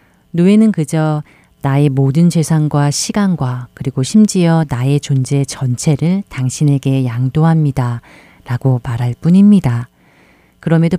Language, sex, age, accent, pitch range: Korean, female, 40-59, native, 130-165 Hz